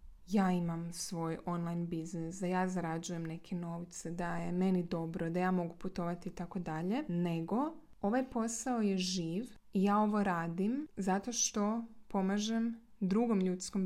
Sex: female